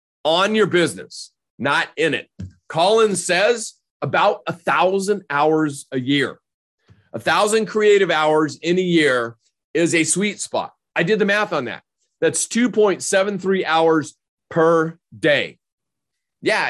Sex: male